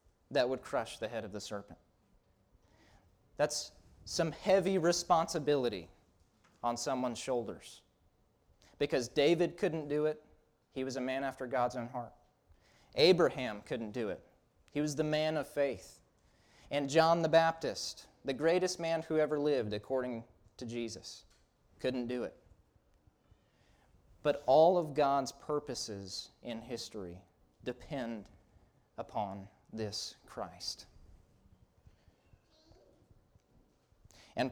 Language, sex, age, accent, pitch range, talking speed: English, male, 30-49, American, 100-150 Hz, 115 wpm